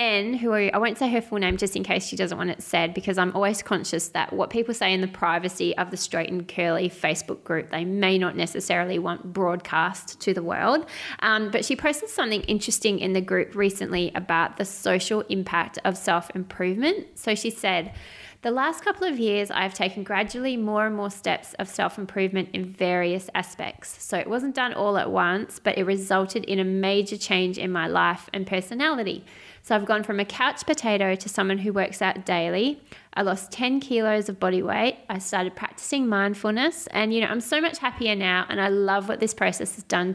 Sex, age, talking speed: female, 20-39, 205 wpm